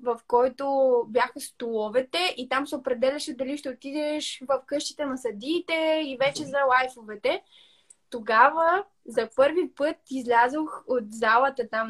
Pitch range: 255-315 Hz